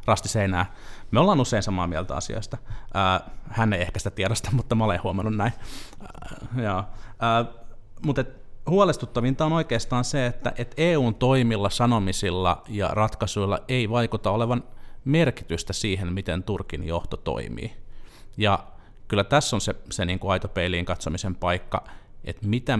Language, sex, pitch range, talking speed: Finnish, male, 95-115 Hz, 135 wpm